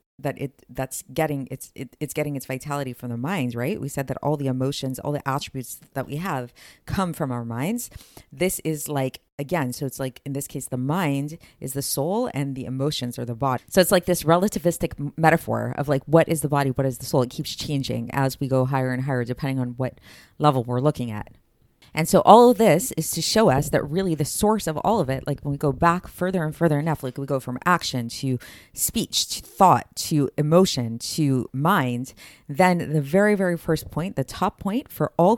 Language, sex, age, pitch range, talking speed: English, female, 30-49, 130-170 Hz, 225 wpm